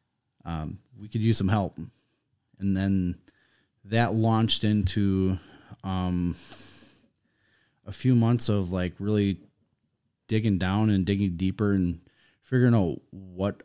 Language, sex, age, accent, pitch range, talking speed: English, male, 30-49, American, 90-110 Hz, 120 wpm